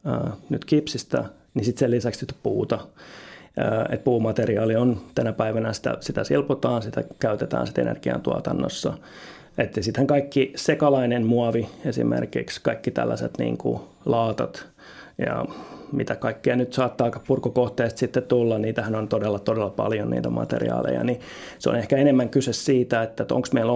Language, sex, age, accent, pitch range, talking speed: Finnish, male, 30-49, native, 105-125 Hz, 145 wpm